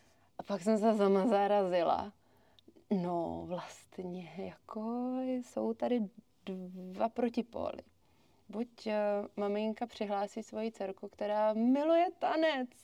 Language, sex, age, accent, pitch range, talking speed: Czech, female, 20-39, native, 185-235 Hz, 100 wpm